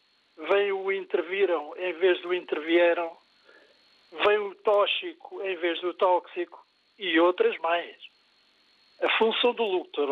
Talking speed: 125 wpm